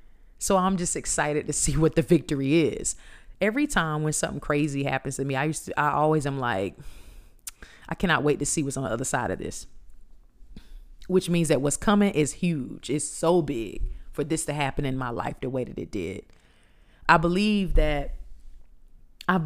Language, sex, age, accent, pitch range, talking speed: English, female, 30-49, American, 135-175 Hz, 195 wpm